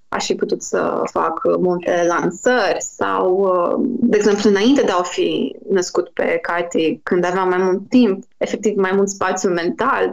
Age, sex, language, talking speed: 20-39, female, Romanian, 160 wpm